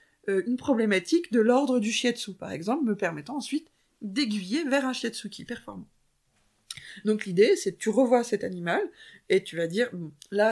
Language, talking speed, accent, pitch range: French, 170 wpm, French, 190-250 Hz